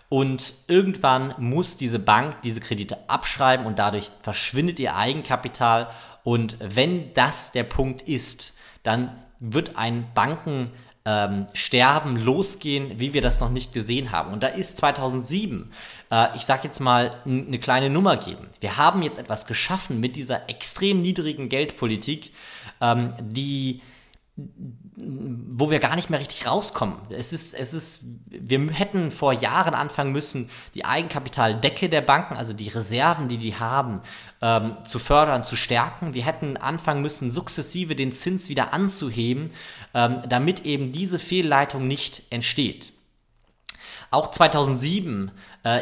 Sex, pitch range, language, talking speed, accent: male, 120-155 Hz, German, 140 wpm, German